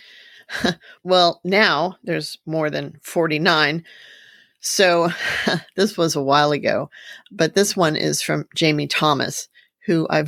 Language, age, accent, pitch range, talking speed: English, 40-59, American, 155-205 Hz, 125 wpm